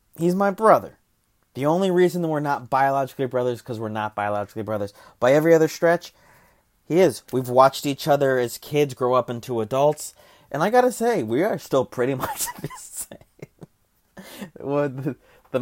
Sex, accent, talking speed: male, American, 175 wpm